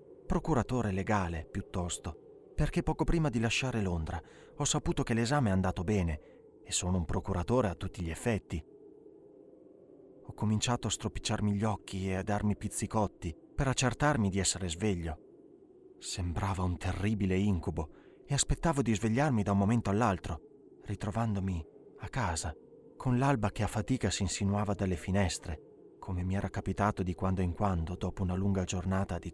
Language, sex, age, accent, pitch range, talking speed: Italian, male, 30-49, native, 90-120 Hz, 155 wpm